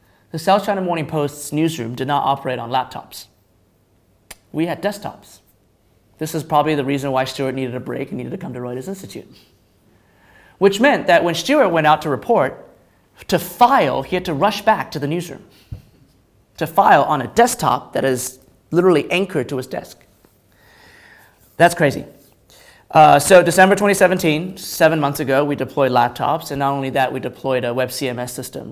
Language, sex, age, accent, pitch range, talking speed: English, male, 30-49, American, 120-155 Hz, 175 wpm